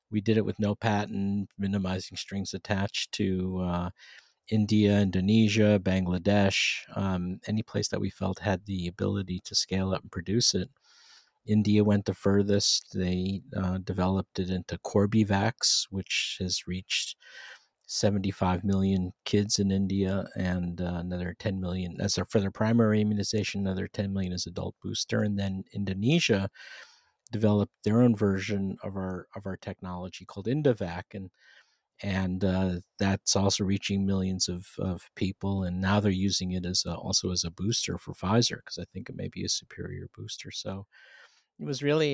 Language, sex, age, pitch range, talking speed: English, male, 50-69, 95-110 Hz, 160 wpm